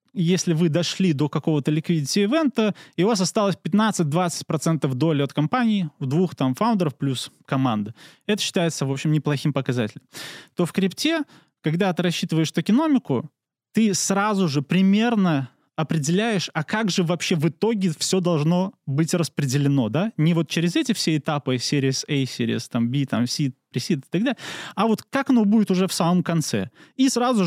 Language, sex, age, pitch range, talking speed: Russian, male, 20-39, 140-190 Hz, 170 wpm